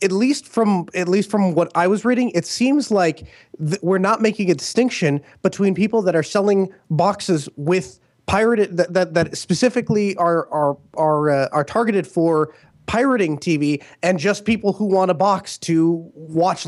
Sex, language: male, English